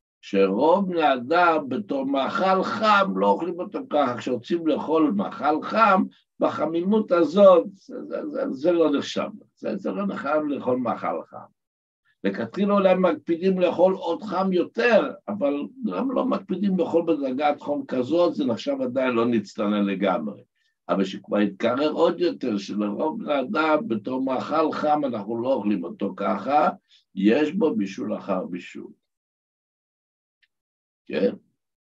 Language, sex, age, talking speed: Hebrew, male, 60-79, 130 wpm